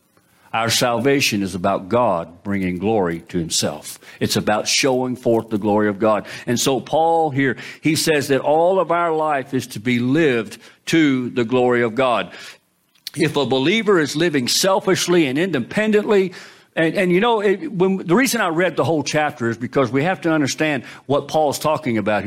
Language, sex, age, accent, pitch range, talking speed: English, male, 50-69, American, 125-205 Hz, 180 wpm